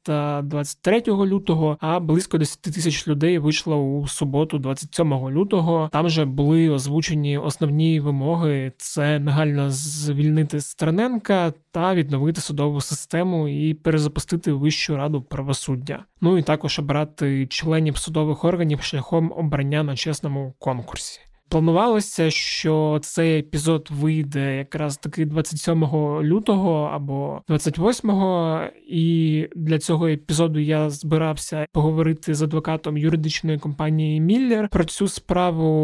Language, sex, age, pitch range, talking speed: Ukrainian, male, 20-39, 150-165 Hz, 120 wpm